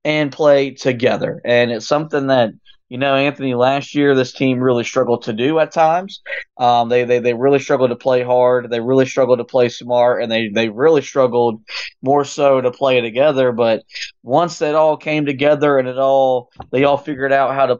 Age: 20-39